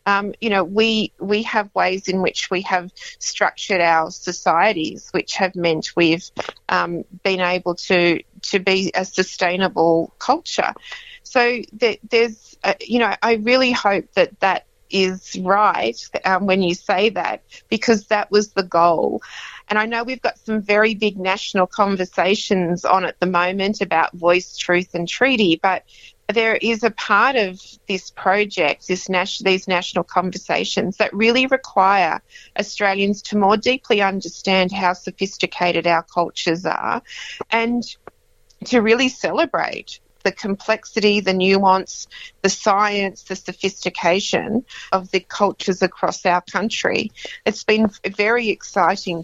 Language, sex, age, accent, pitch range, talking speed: English, female, 30-49, Australian, 180-210 Hz, 140 wpm